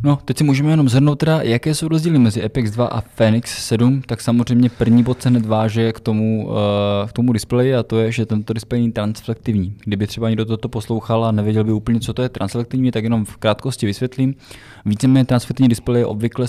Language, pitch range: Czech, 105-115 Hz